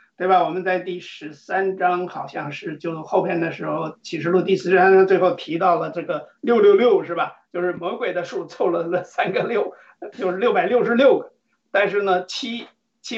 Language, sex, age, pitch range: Chinese, male, 50-69, 185-285 Hz